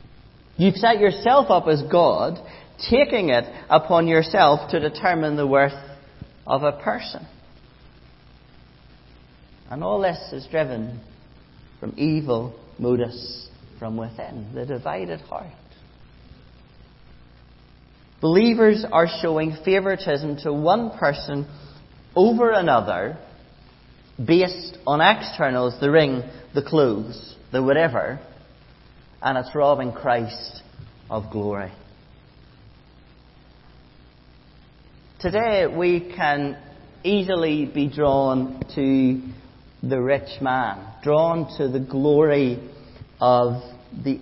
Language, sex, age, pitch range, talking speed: English, male, 40-59, 125-165 Hz, 95 wpm